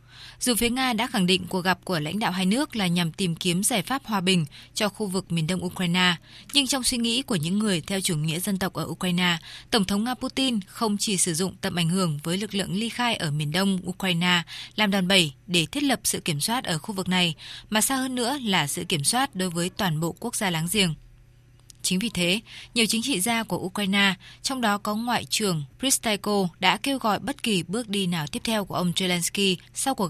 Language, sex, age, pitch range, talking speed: Vietnamese, female, 20-39, 175-215 Hz, 240 wpm